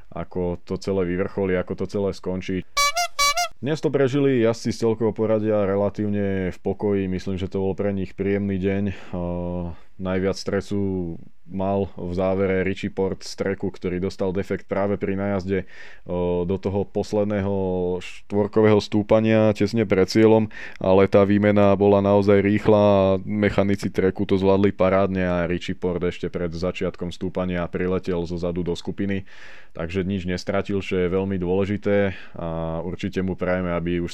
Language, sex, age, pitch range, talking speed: Slovak, male, 20-39, 90-100 Hz, 155 wpm